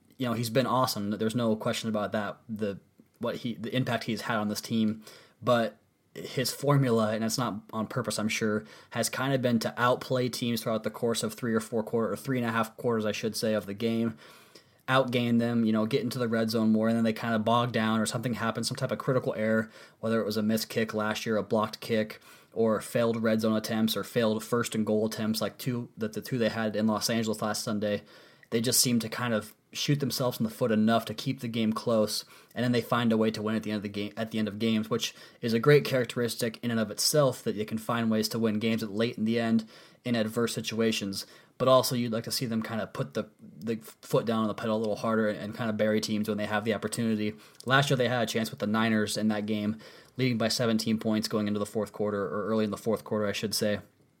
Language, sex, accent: English, male, American